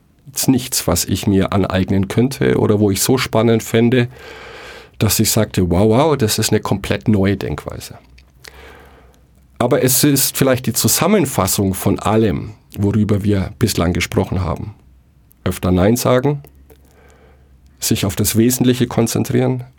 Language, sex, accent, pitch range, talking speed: German, male, German, 95-125 Hz, 135 wpm